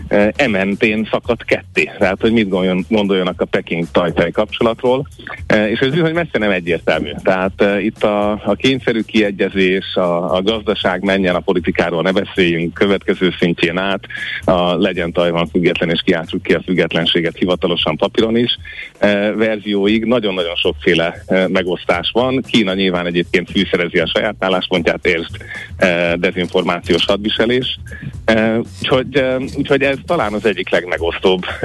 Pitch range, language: 90-110 Hz, Hungarian